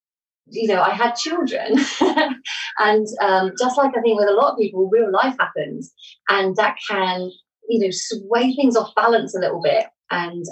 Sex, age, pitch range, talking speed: female, 30-49, 185-250 Hz, 185 wpm